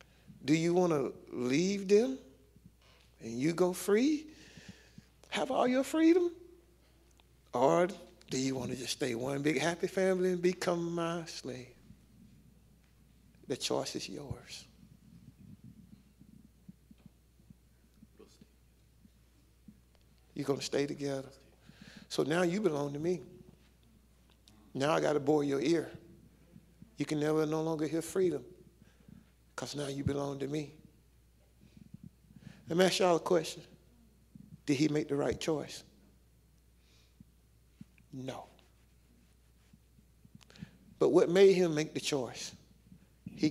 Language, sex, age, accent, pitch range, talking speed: English, male, 60-79, American, 115-180 Hz, 115 wpm